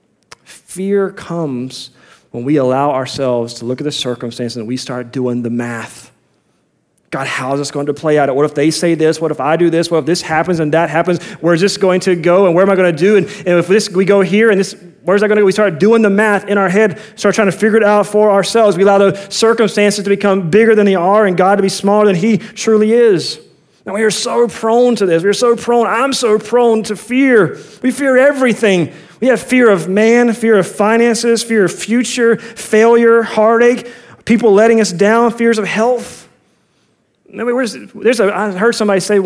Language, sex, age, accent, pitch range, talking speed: English, male, 30-49, American, 155-215 Hz, 225 wpm